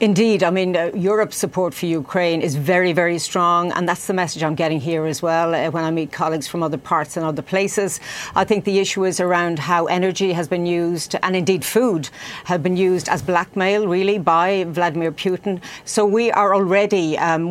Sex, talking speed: female, 205 wpm